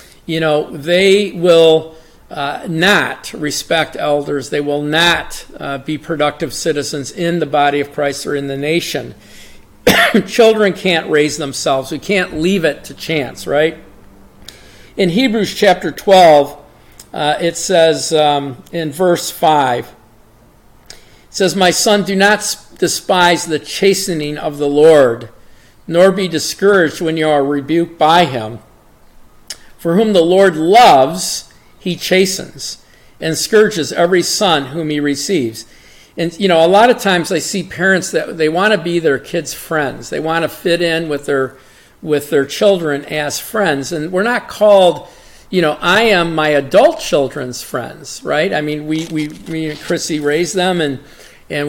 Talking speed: 155 wpm